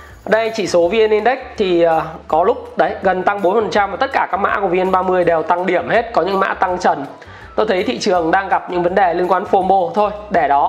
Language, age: Vietnamese, 20-39